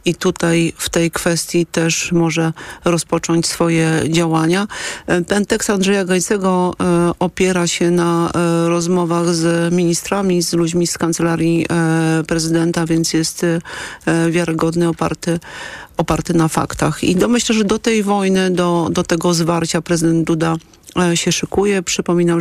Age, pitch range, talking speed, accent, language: 40-59, 165-175 Hz, 125 wpm, native, Polish